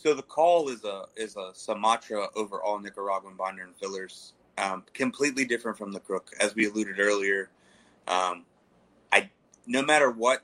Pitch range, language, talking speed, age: 95-110 Hz, English, 165 wpm, 30-49